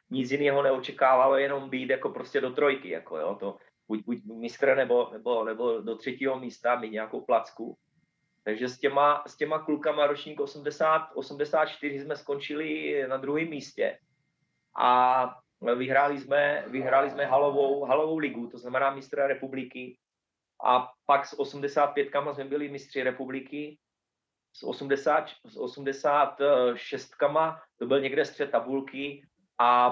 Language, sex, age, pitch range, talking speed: Czech, male, 30-49, 120-145 Hz, 135 wpm